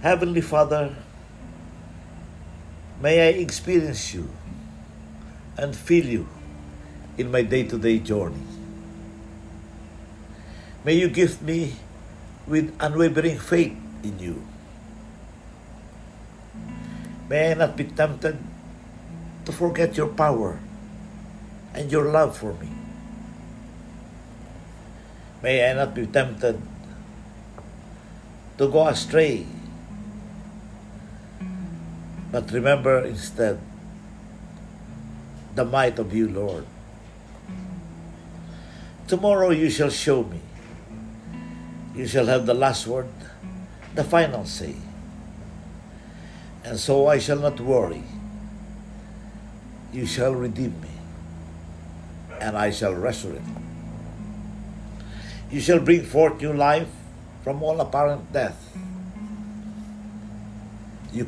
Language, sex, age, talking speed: English, male, 50-69, 90 wpm